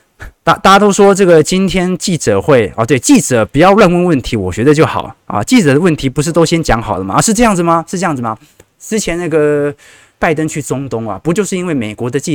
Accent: native